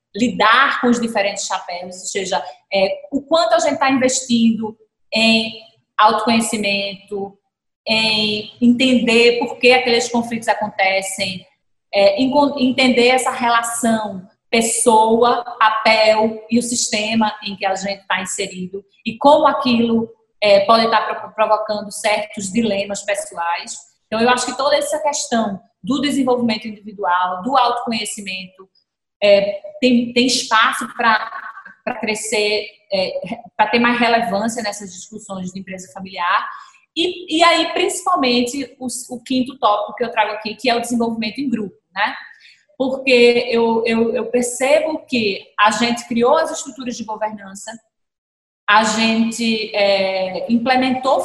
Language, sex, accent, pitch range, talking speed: Portuguese, female, Brazilian, 210-250 Hz, 130 wpm